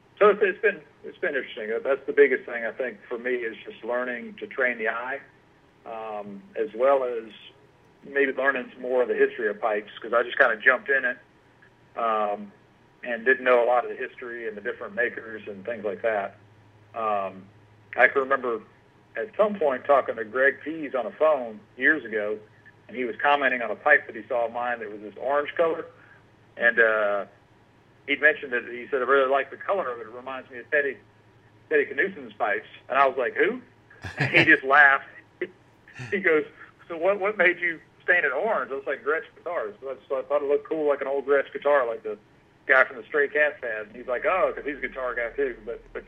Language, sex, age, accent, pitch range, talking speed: English, male, 40-59, American, 110-175 Hz, 220 wpm